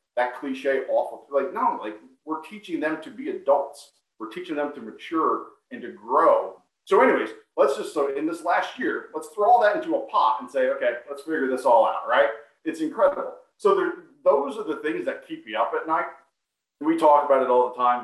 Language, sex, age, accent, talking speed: English, male, 40-59, American, 220 wpm